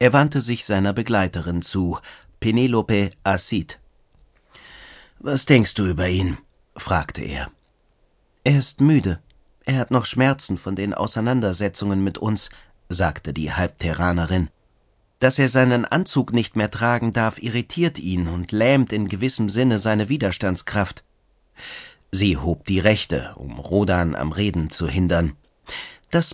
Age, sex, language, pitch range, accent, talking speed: 40-59, male, German, 95-130 Hz, German, 130 wpm